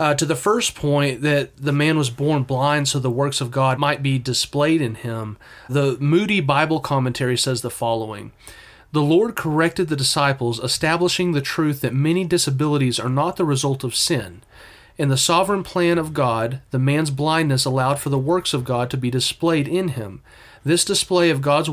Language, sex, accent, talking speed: English, male, American, 190 wpm